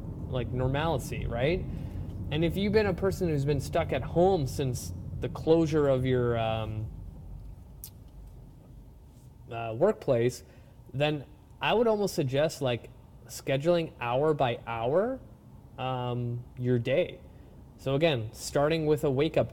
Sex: male